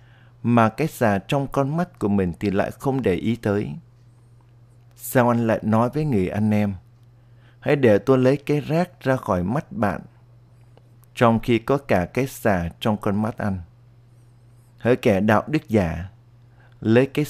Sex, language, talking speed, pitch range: male, Vietnamese, 170 wpm, 110-125 Hz